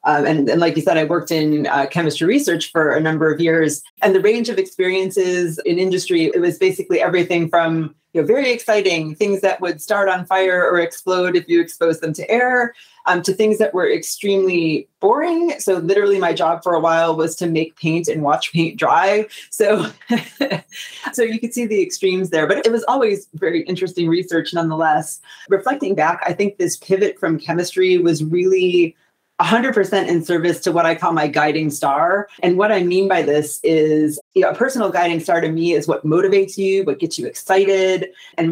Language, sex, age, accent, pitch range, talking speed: English, female, 30-49, American, 165-205 Hz, 200 wpm